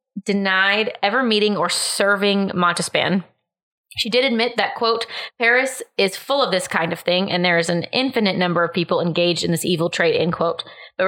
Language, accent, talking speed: English, American, 190 wpm